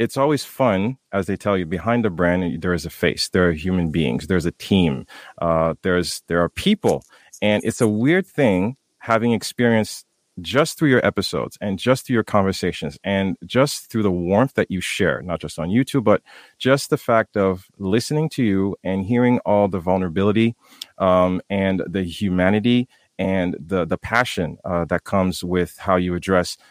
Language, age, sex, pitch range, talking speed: English, 30-49, male, 90-115 Hz, 185 wpm